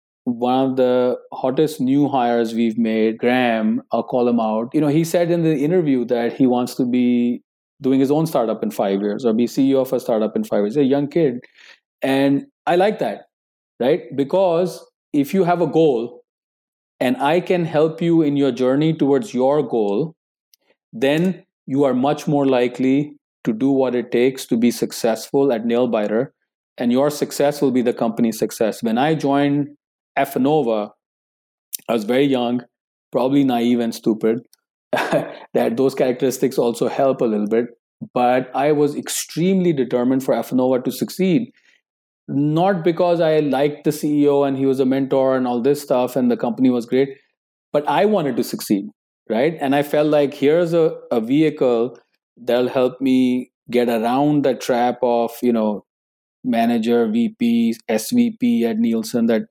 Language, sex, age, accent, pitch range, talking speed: English, male, 40-59, Indian, 120-150 Hz, 170 wpm